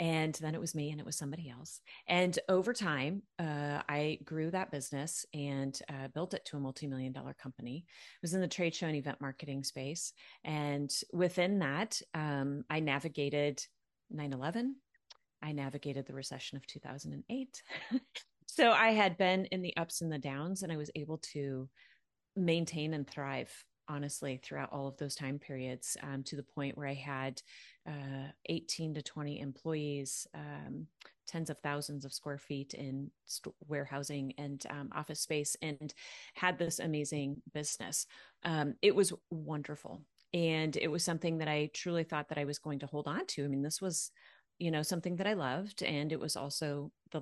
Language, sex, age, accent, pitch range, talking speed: English, female, 30-49, American, 140-170 Hz, 180 wpm